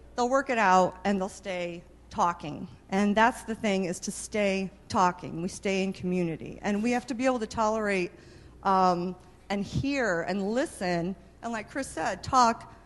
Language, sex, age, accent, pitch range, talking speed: English, female, 50-69, American, 185-250 Hz, 175 wpm